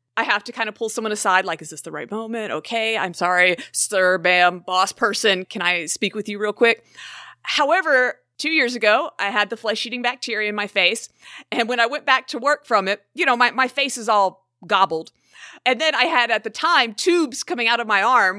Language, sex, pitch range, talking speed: English, female, 205-255 Hz, 230 wpm